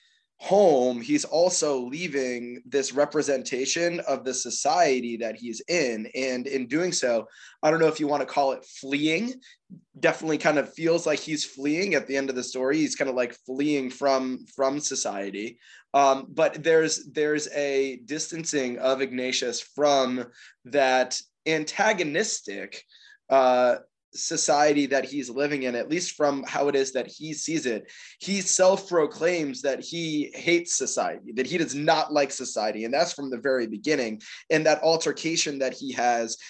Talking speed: 160 wpm